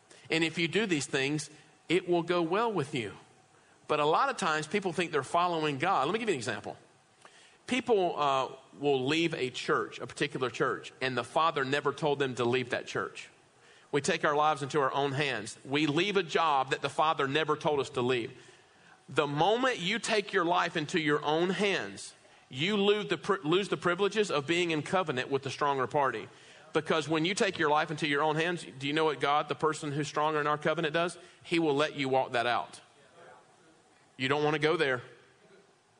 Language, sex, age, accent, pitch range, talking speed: English, male, 40-59, American, 145-195 Hz, 210 wpm